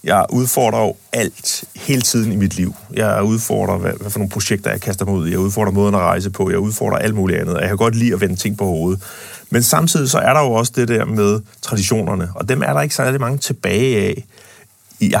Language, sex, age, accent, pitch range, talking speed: Danish, male, 30-49, native, 105-145 Hz, 235 wpm